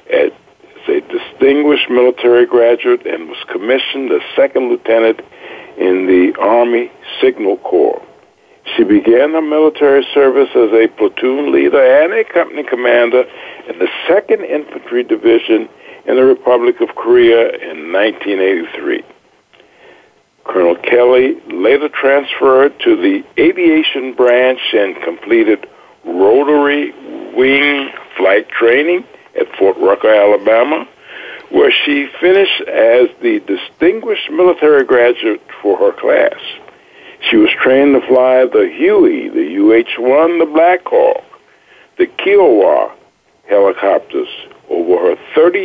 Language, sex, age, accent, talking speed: English, male, 60-79, American, 115 wpm